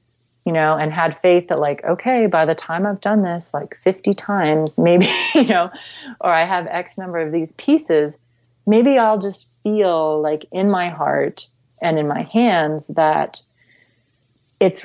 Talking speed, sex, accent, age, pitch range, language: 170 wpm, female, American, 30-49, 155-195 Hz, English